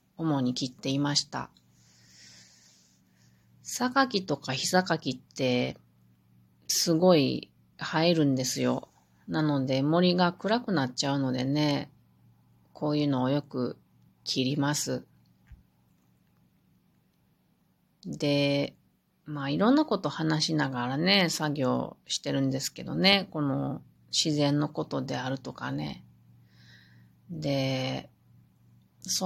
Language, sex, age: Japanese, female, 30-49